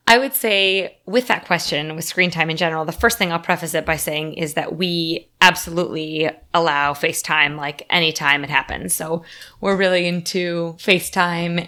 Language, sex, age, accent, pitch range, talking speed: English, female, 20-39, American, 160-200 Hz, 175 wpm